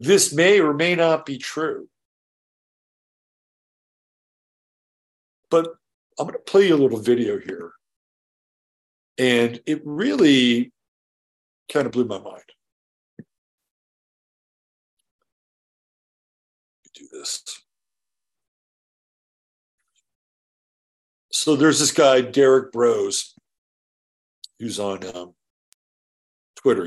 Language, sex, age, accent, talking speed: English, male, 60-79, American, 85 wpm